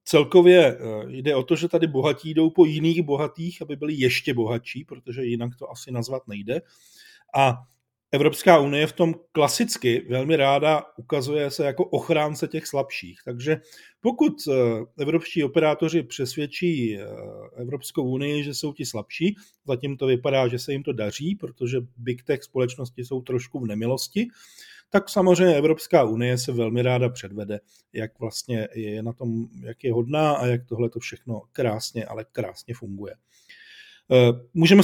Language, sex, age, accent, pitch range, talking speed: Czech, male, 40-59, native, 120-155 Hz, 150 wpm